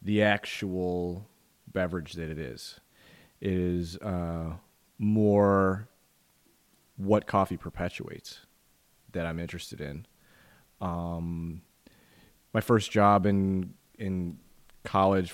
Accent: American